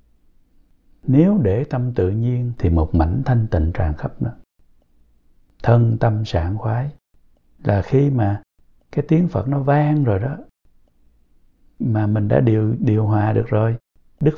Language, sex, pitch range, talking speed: Vietnamese, male, 90-125 Hz, 150 wpm